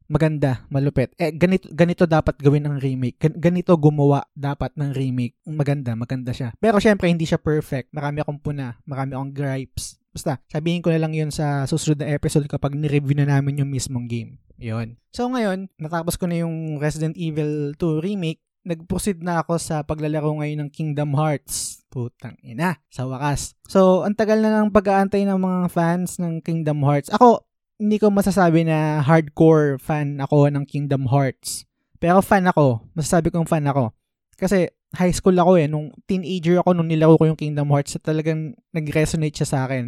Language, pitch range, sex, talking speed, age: Filipino, 145-180 Hz, male, 180 wpm, 20-39